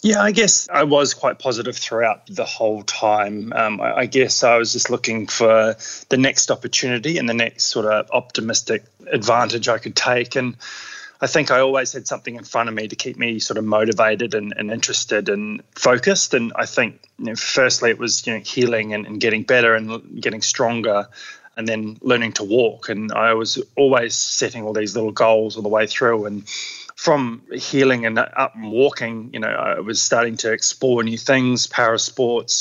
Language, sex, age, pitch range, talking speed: English, male, 20-39, 110-125 Hz, 200 wpm